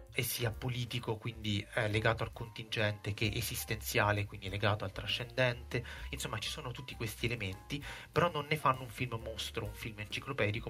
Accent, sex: native, male